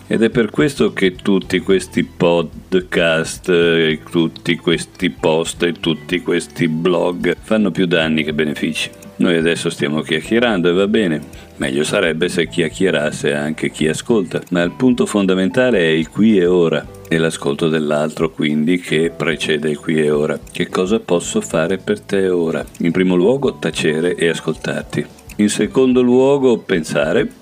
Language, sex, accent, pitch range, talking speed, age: Italian, male, native, 80-95 Hz, 155 wpm, 50-69